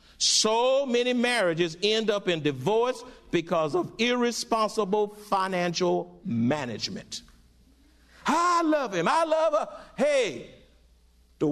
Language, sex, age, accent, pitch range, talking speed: English, male, 60-79, American, 170-230 Hz, 105 wpm